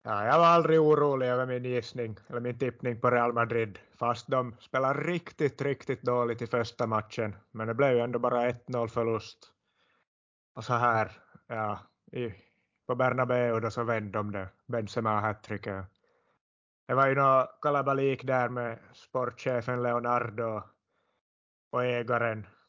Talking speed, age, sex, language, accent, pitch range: 155 wpm, 30-49, male, Swedish, Finnish, 105-120 Hz